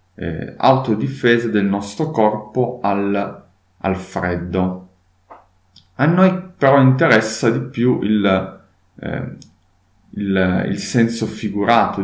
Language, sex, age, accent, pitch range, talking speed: Italian, male, 30-49, native, 95-130 Hz, 85 wpm